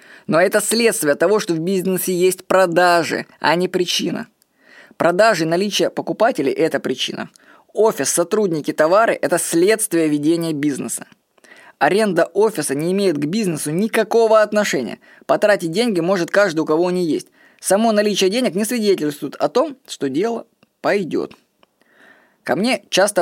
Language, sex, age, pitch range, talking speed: Russian, female, 20-39, 170-220 Hz, 140 wpm